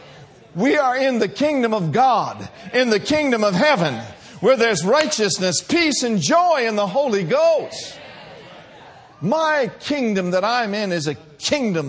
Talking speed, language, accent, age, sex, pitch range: 150 wpm, English, American, 50-69, male, 140-240 Hz